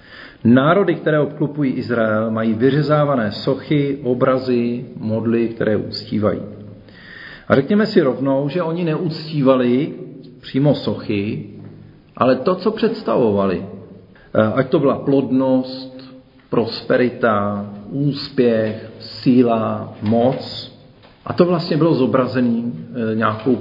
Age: 50-69